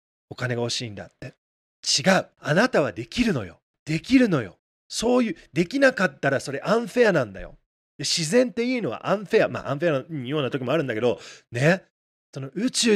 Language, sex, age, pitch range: Japanese, male, 40-59, 135-215 Hz